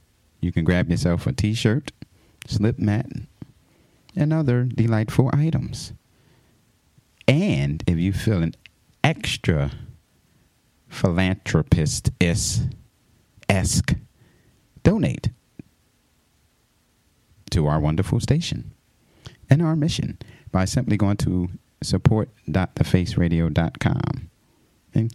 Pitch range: 90-130 Hz